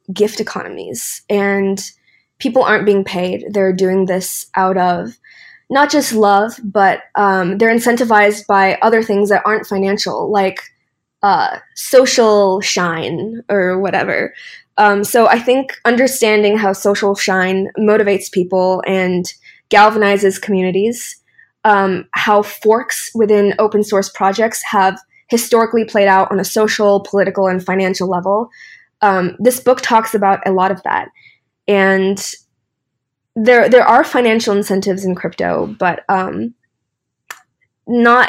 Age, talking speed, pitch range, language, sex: 20-39, 130 wpm, 185-220 Hz, English, female